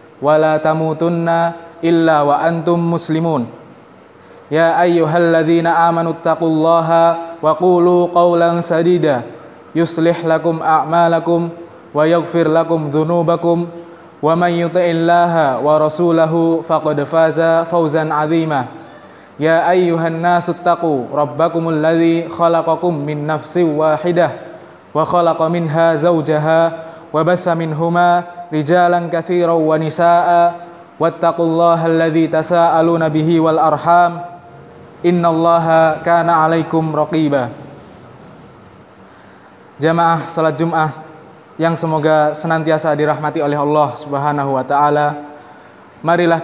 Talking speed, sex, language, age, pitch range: 95 wpm, male, Indonesian, 20-39, 155-170 Hz